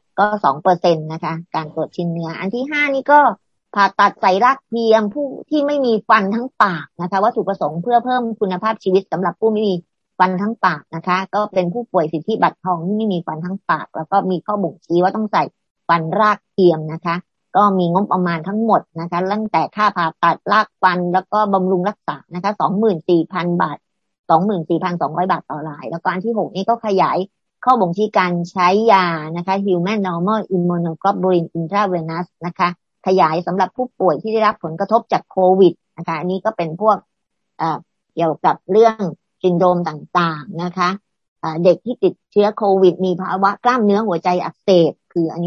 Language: English